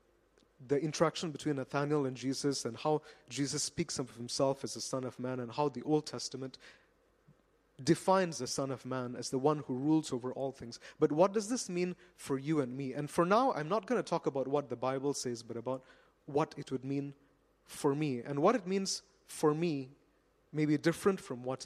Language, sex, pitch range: English, male, 125-160 Hz